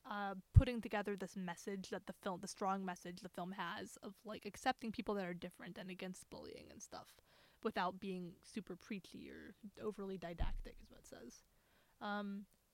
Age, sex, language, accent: 20-39, female, English, American